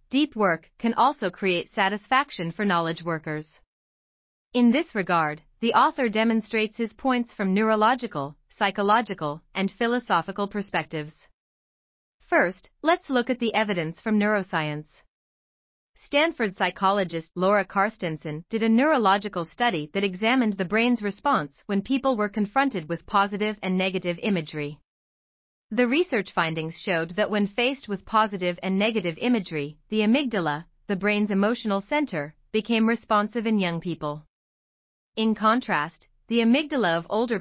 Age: 40-59